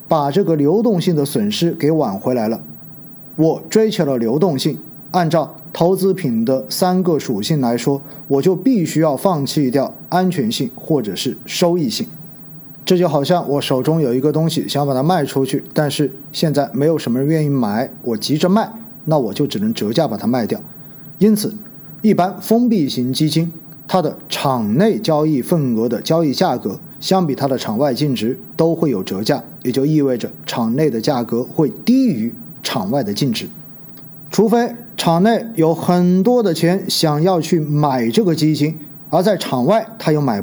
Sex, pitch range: male, 150-200 Hz